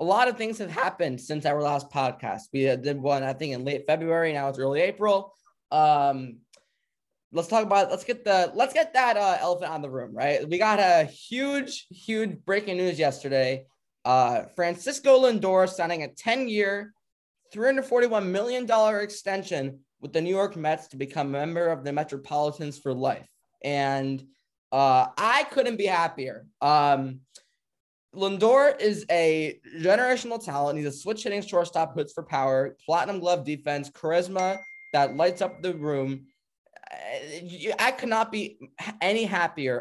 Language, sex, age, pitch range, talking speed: English, male, 20-39, 140-205 Hz, 160 wpm